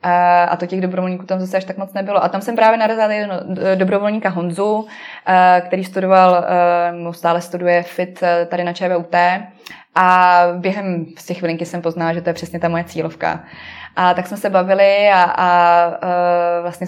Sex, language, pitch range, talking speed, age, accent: female, Czech, 170-185 Hz, 170 wpm, 20-39, native